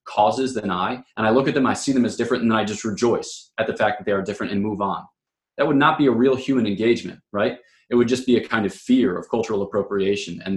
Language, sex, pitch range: English, male, 105-130 Hz